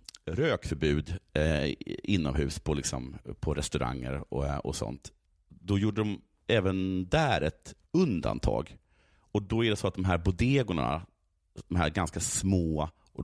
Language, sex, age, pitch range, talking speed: Swedish, male, 30-49, 75-100 Hz, 140 wpm